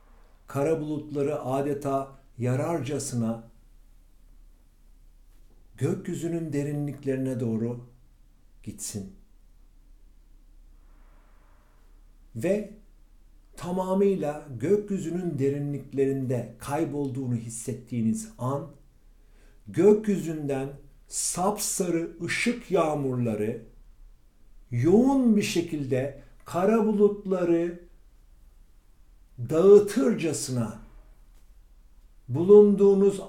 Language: Turkish